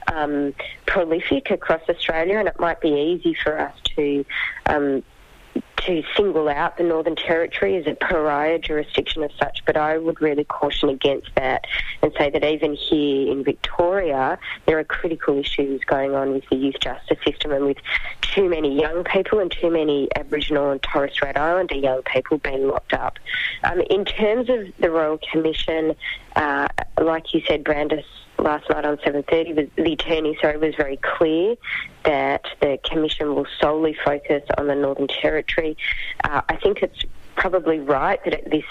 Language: English